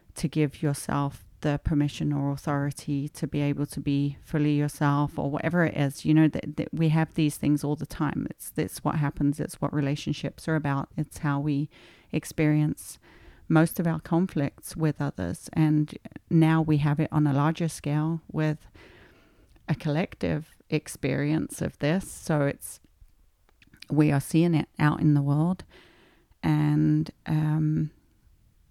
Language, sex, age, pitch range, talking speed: English, female, 40-59, 145-170 Hz, 155 wpm